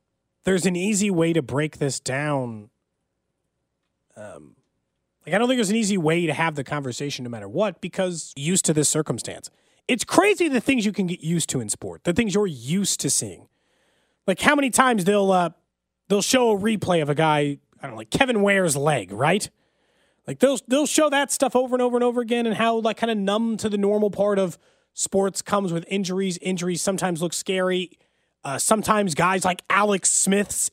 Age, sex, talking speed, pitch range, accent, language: 30-49, male, 205 wpm, 155-215 Hz, American, English